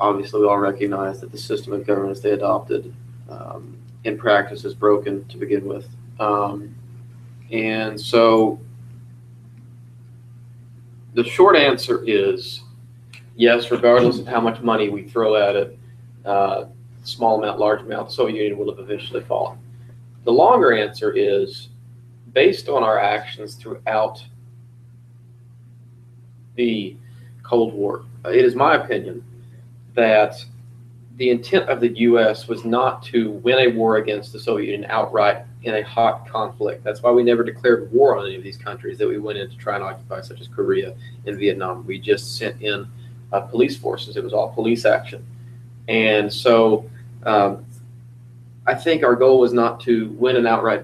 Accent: American